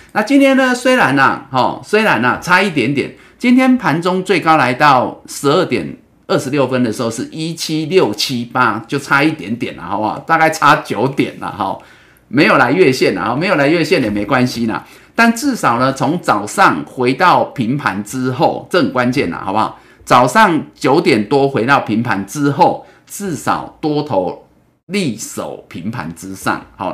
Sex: male